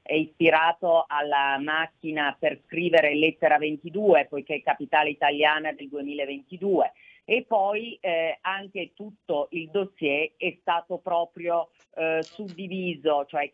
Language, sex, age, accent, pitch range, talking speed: Italian, female, 40-59, native, 145-170 Hz, 120 wpm